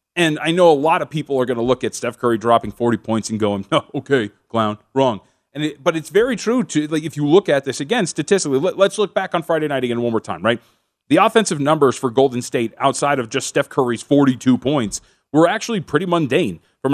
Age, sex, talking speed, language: 30-49, male, 240 wpm, English